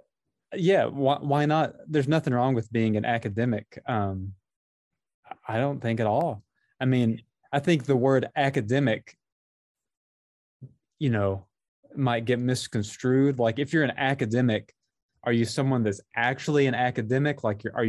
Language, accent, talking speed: English, American, 145 wpm